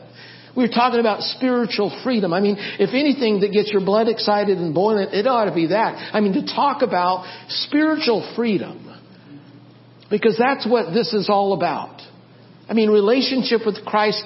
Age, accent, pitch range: 60-79, American, 195-230 Hz